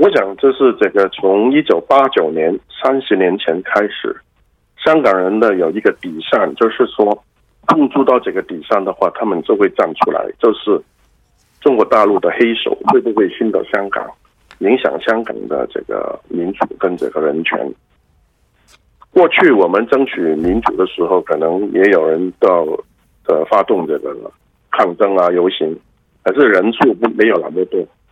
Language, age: Korean, 50-69